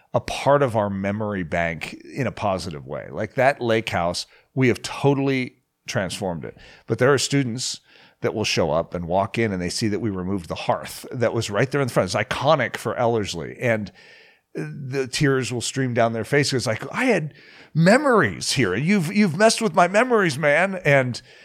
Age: 50-69